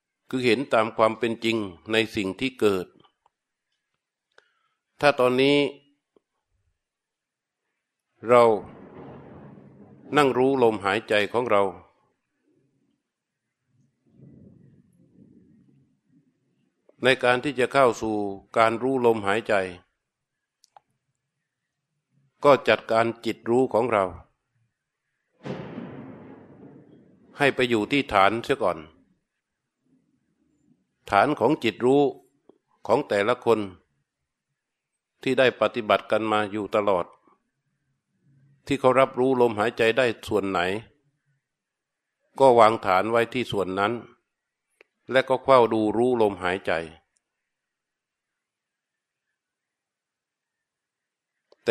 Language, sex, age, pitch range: Thai, male, 60-79, 105-135 Hz